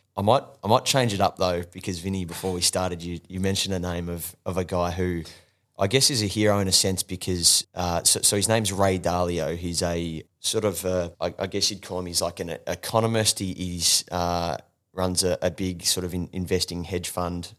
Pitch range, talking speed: 85-95 Hz, 230 wpm